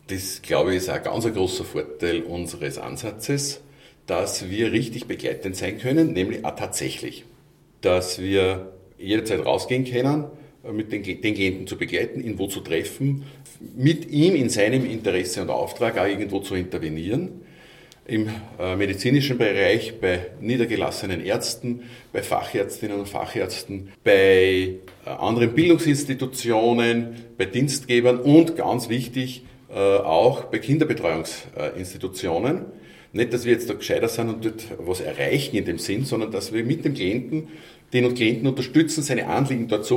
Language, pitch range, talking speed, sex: German, 100-150 Hz, 145 wpm, male